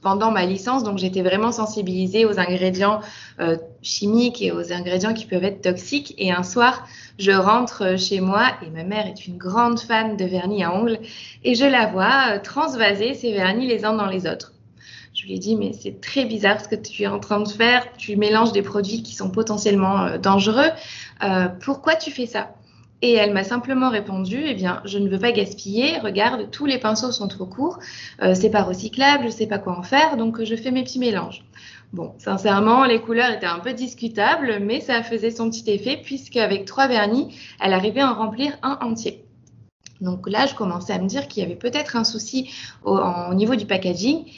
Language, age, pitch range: French, 20-39, 200-240 Hz